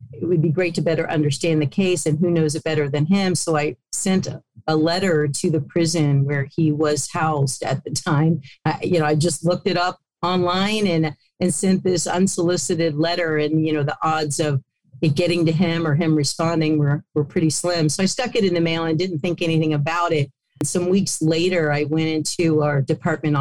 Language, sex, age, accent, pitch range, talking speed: English, female, 40-59, American, 150-170 Hz, 220 wpm